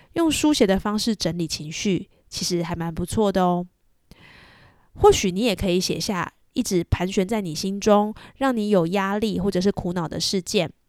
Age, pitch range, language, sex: 20-39, 175-230 Hz, Chinese, female